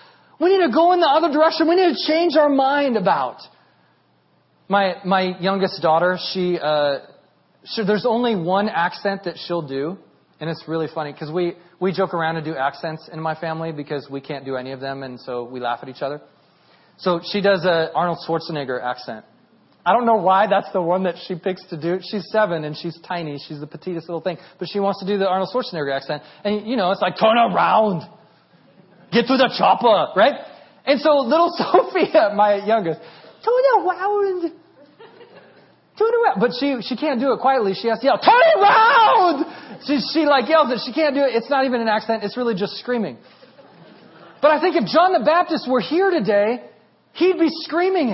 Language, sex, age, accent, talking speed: English, male, 30-49, American, 200 wpm